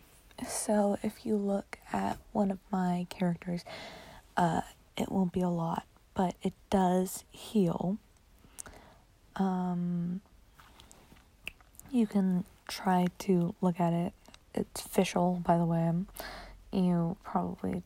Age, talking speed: 20-39, 115 wpm